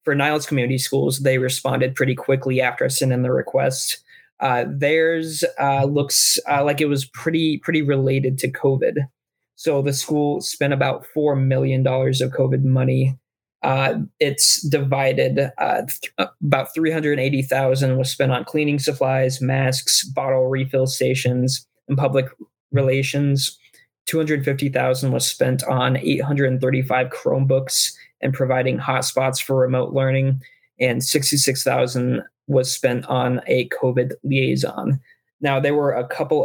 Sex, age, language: male, 20-39, English